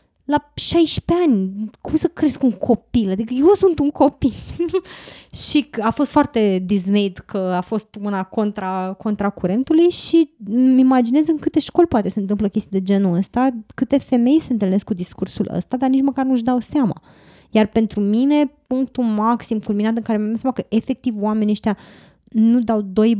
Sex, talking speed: female, 175 wpm